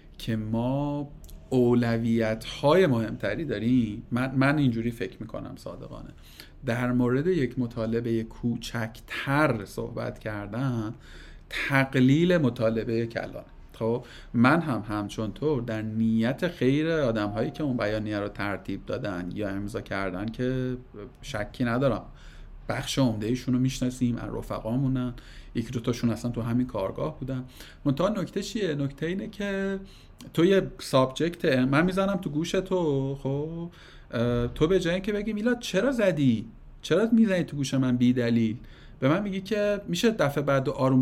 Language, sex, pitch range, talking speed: Persian, male, 115-155 Hz, 140 wpm